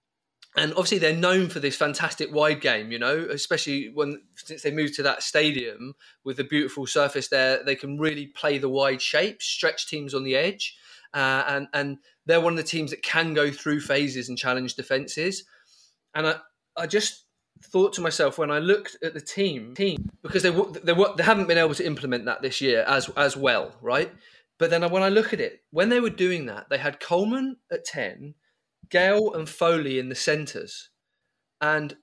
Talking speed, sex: 200 wpm, male